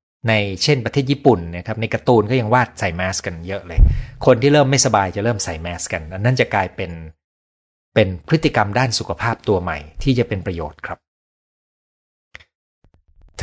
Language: Thai